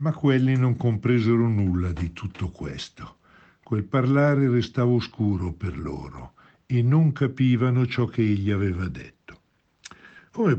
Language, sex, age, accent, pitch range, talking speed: Italian, male, 60-79, native, 95-125 Hz, 130 wpm